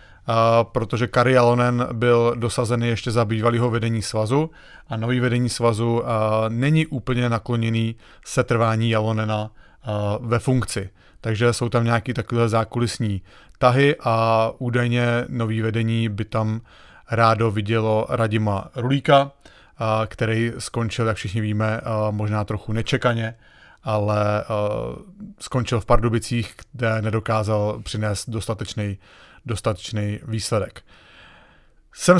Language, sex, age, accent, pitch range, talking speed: English, male, 30-49, Czech, 110-125 Hz, 115 wpm